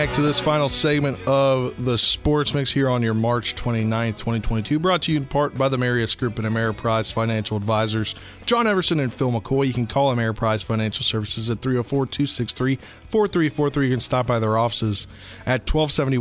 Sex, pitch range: male, 110-135 Hz